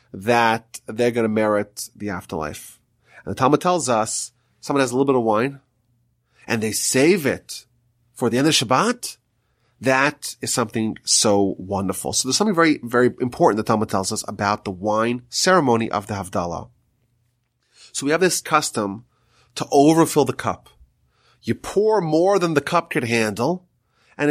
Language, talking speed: English, 170 wpm